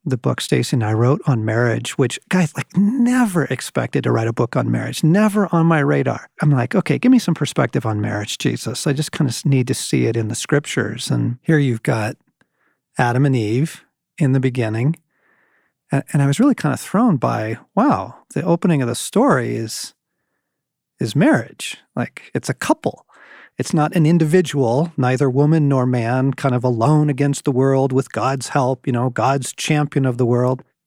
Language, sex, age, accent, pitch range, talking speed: English, male, 40-59, American, 125-165 Hz, 190 wpm